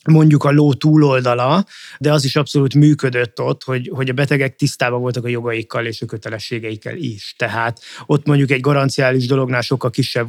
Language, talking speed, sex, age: Hungarian, 175 wpm, male, 20-39